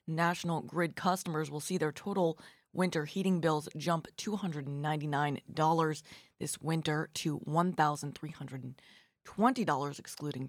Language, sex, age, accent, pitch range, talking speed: English, female, 20-39, American, 145-180 Hz, 95 wpm